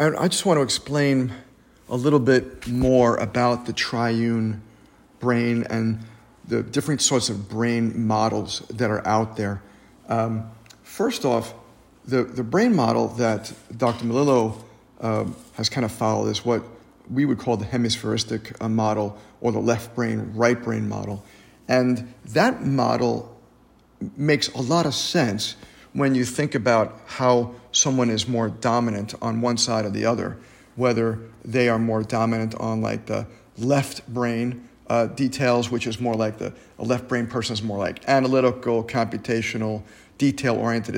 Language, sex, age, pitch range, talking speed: English, male, 40-59, 115-130 Hz, 155 wpm